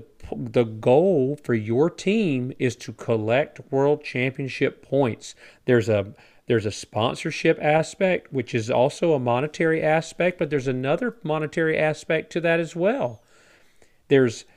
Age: 40-59